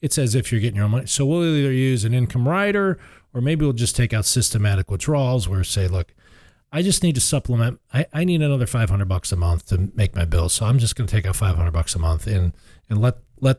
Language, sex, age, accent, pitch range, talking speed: English, male, 40-59, American, 95-135 Hz, 265 wpm